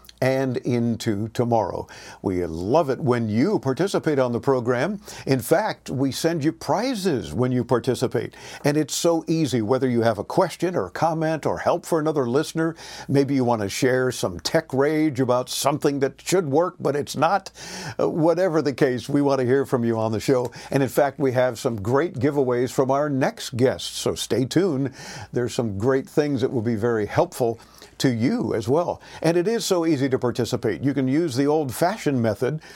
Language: English